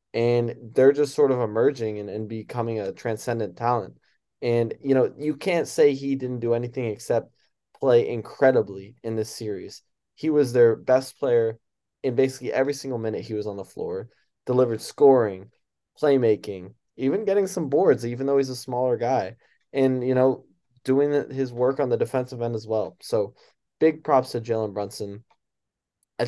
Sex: male